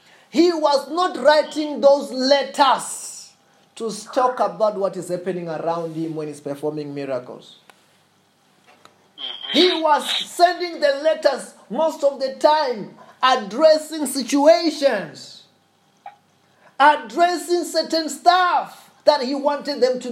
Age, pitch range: 30-49, 225-310 Hz